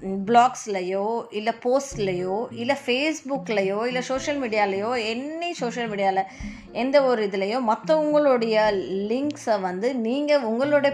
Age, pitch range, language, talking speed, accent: 20-39, 210-275 Hz, Tamil, 105 wpm, native